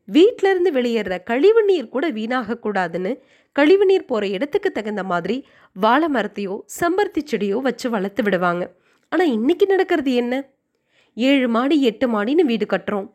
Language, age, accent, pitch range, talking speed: Tamil, 20-39, native, 215-350 Hz, 130 wpm